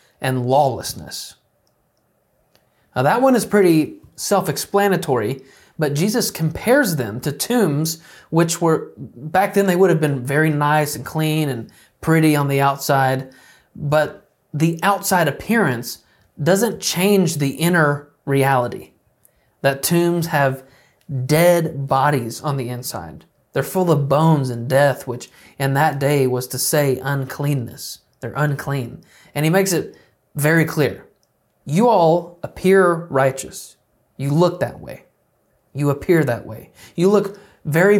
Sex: male